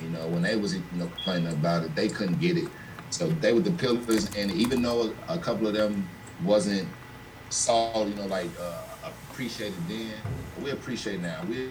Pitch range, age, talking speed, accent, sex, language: 95-125 Hz, 30-49, 195 wpm, American, male, English